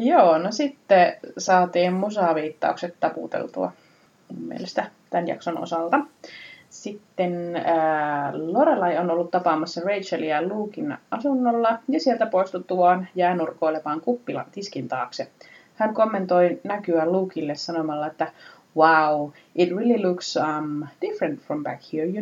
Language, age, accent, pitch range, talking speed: Finnish, 30-49, native, 160-240 Hz, 115 wpm